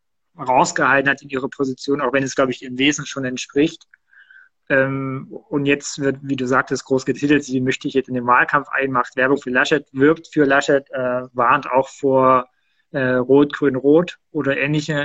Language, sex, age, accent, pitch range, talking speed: German, male, 20-39, German, 130-150 Hz, 175 wpm